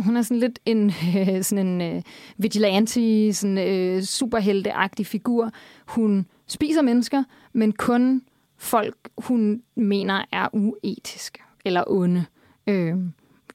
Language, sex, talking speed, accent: Danish, female, 120 wpm, native